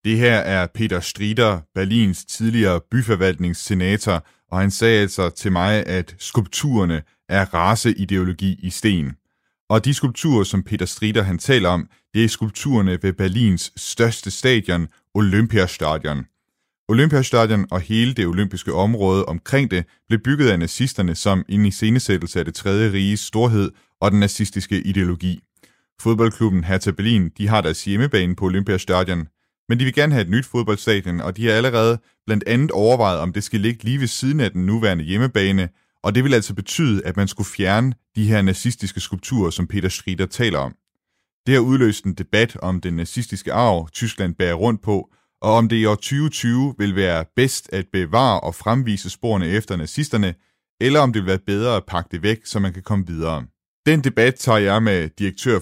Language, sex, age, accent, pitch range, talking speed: Danish, male, 30-49, native, 95-115 Hz, 180 wpm